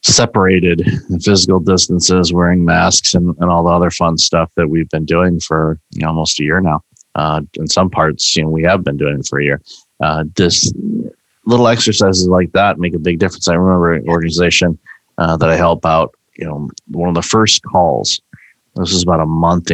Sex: male